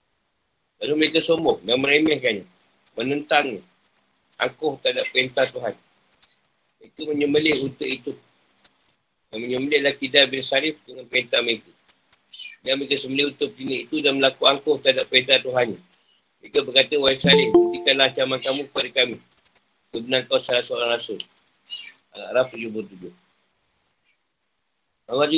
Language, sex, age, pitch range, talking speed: Malay, male, 50-69, 130-155 Hz, 125 wpm